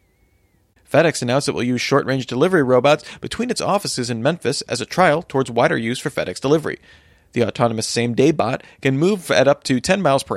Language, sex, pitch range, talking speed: English, male, 120-155 Hz, 195 wpm